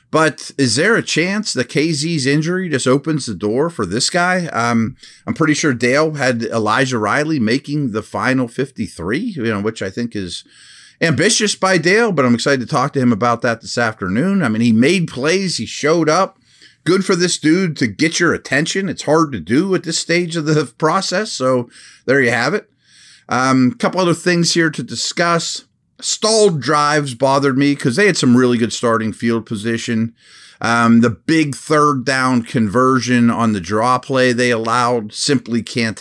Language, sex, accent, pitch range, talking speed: English, male, American, 115-155 Hz, 190 wpm